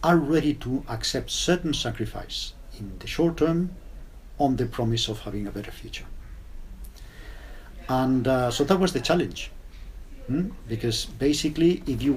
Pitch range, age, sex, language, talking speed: 105-140 Hz, 50-69, male, English, 150 wpm